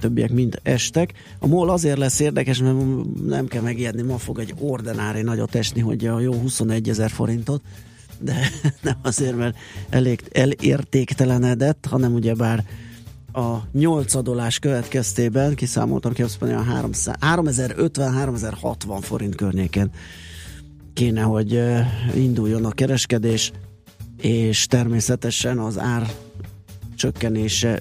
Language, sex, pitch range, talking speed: Hungarian, male, 110-125 Hz, 110 wpm